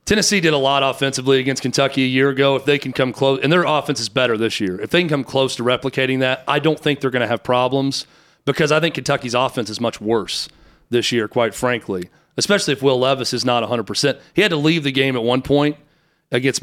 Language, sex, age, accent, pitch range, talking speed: English, male, 40-59, American, 130-155 Hz, 240 wpm